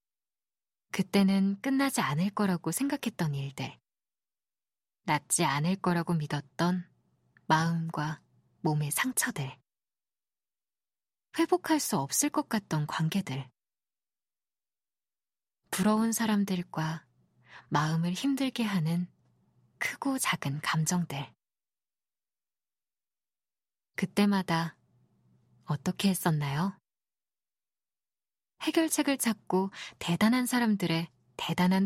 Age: 20-39